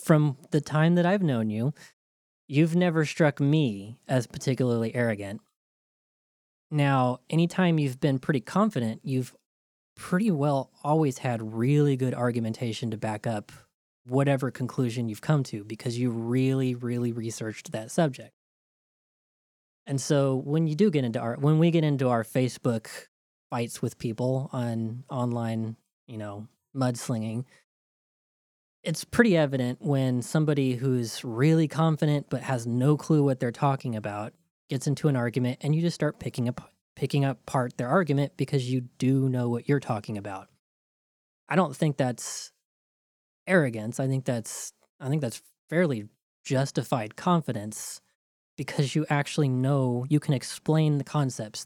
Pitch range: 115-150 Hz